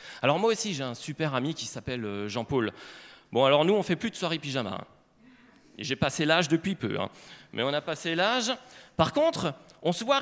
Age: 30-49